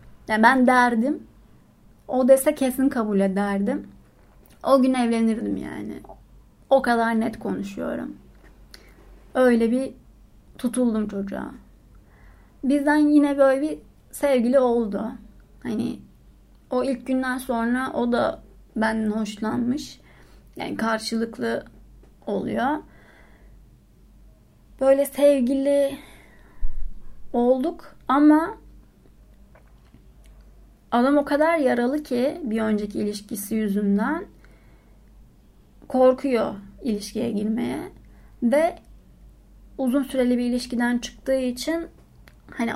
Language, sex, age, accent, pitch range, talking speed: Turkish, female, 30-49, native, 220-270 Hz, 85 wpm